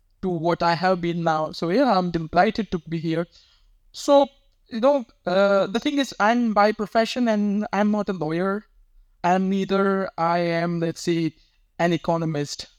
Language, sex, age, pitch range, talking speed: English, male, 20-39, 165-205 Hz, 165 wpm